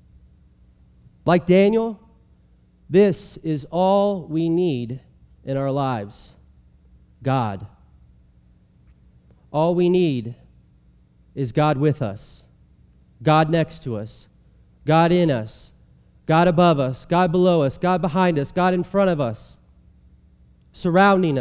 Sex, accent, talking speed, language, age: male, American, 110 wpm, English, 30-49